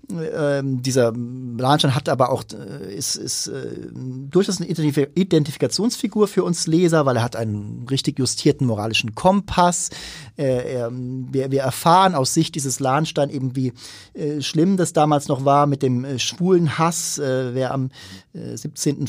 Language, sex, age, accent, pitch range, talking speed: German, male, 40-59, German, 130-165 Hz, 155 wpm